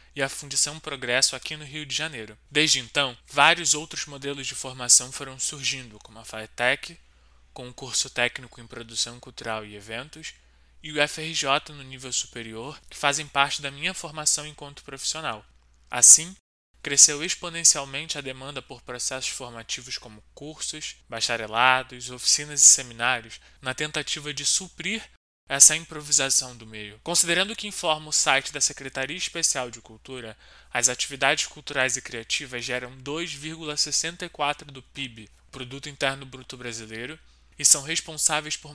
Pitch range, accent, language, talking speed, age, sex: 125-155 Hz, Brazilian, Portuguese, 145 wpm, 20-39, male